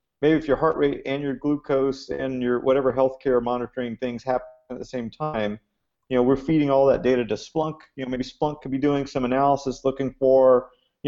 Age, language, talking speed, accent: 40-59, English, 215 wpm, American